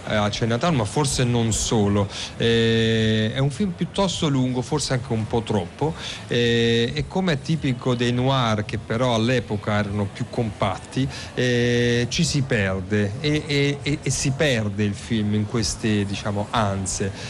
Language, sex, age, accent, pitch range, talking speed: Italian, male, 40-59, native, 110-135 Hz, 155 wpm